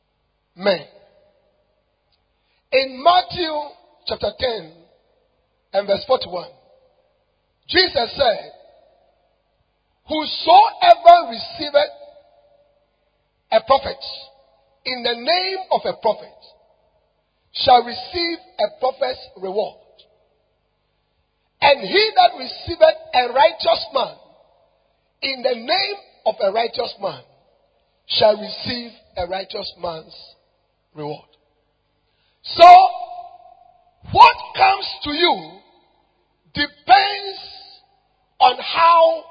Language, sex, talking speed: English, male, 80 wpm